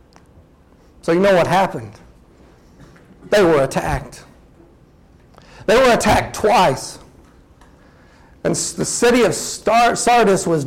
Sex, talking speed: male, 100 wpm